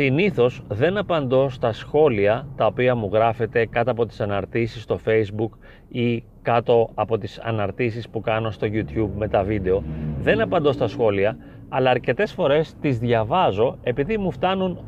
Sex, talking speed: male, 155 wpm